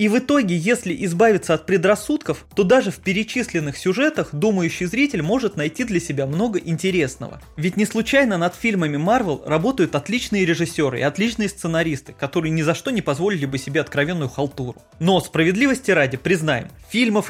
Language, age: Russian, 20-39